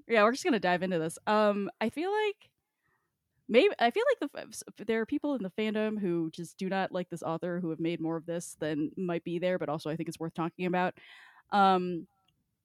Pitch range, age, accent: 180-245 Hz, 10-29, American